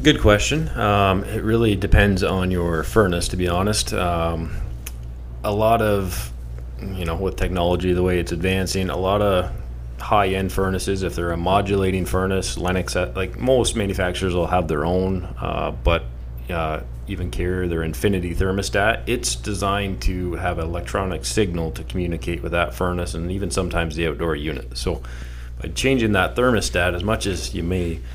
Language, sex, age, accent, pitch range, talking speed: English, male, 30-49, American, 80-95 Hz, 165 wpm